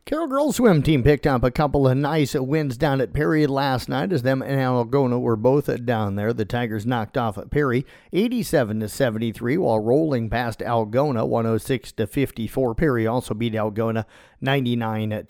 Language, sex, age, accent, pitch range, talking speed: English, male, 50-69, American, 115-145 Hz, 160 wpm